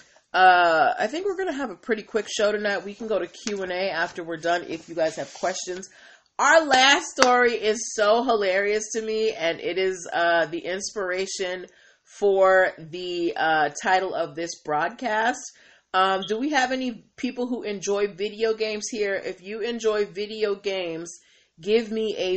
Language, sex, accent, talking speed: English, female, American, 175 wpm